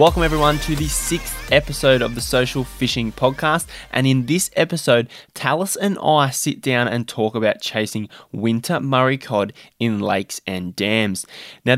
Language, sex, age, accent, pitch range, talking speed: English, male, 20-39, Australian, 105-140 Hz, 165 wpm